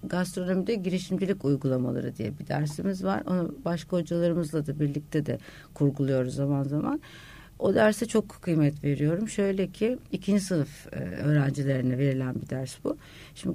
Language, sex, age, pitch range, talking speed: Turkish, female, 60-79, 145-185 Hz, 135 wpm